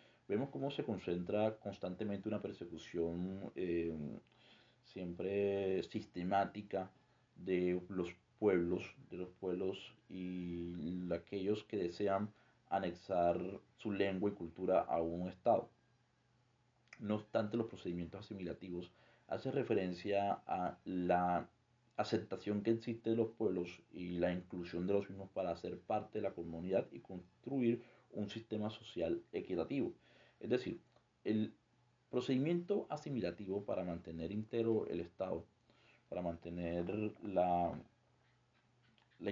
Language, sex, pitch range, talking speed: Spanish, male, 90-110 Hz, 115 wpm